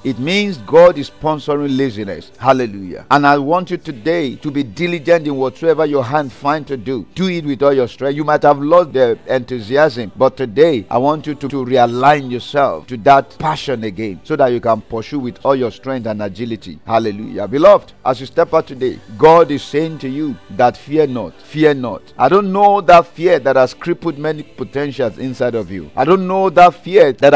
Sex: male